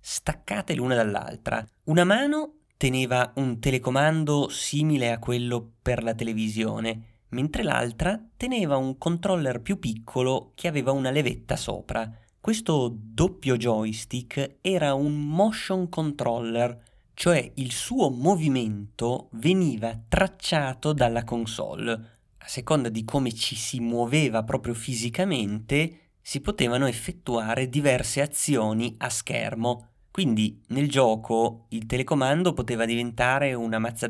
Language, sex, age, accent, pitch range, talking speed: Italian, male, 30-49, native, 115-145 Hz, 115 wpm